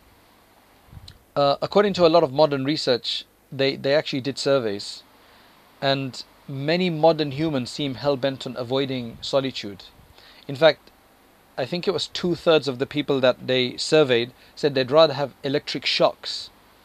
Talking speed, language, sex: 145 wpm, English, male